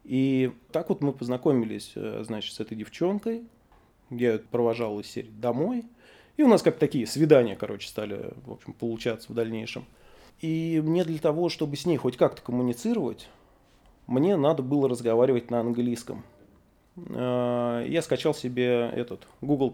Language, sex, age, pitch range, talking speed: Russian, male, 20-39, 115-140 Hz, 145 wpm